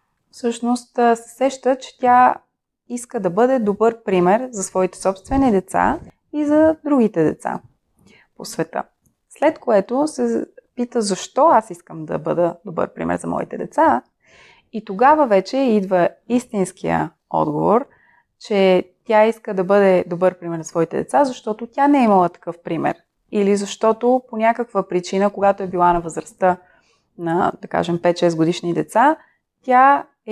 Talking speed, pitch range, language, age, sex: 150 wpm, 190-250 Hz, Bulgarian, 20-39, female